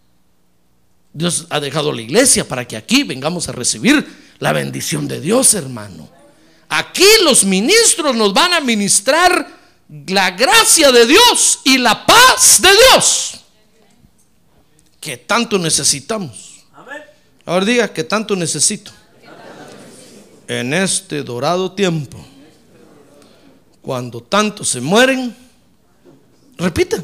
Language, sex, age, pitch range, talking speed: Spanish, male, 50-69, 165-270 Hz, 110 wpm